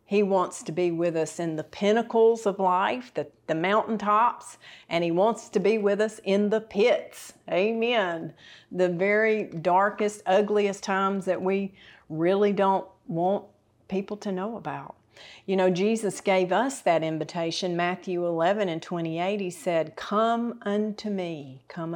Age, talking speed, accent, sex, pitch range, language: 40-59, 155 wpm, American, female, 165-195 Hz, English